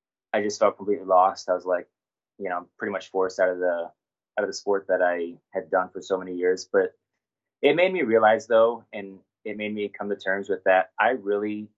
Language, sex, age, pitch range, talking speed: English, male, 20-39, 95-105 Hz, 230 wpm